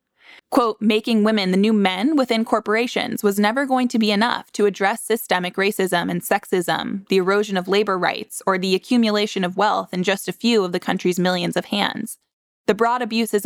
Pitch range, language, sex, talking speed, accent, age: 195-235 Hz, English, female, 190 wpm, American, 10-29